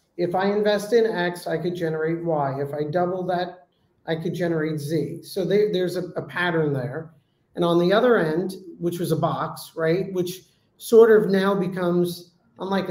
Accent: American